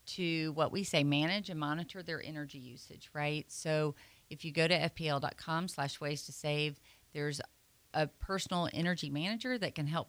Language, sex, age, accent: English, female, 40-59, American